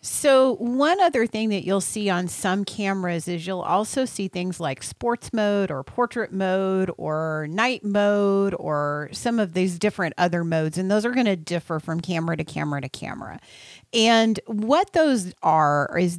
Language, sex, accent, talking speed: English, female, American, 180 wpm